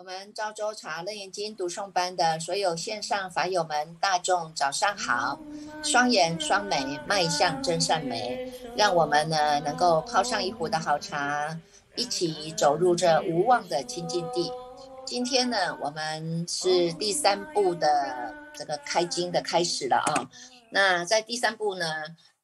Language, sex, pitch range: Chinese, female, 155-205 Hz